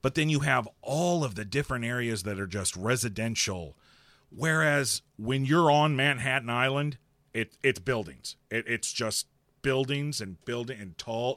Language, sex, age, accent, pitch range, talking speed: English, male, 40-59, American, 105-140 Hz, 160 wpm